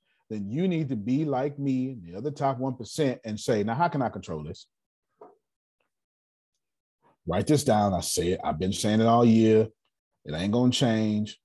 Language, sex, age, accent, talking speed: English, male, 30-49, American, 185 wpm